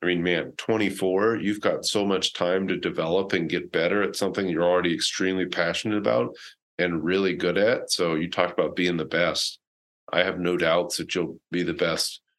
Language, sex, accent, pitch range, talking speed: English, male, American, 80-100 Hz, 205 wpm